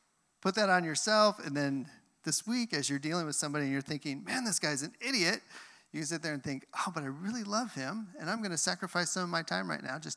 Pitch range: 130-160 Hz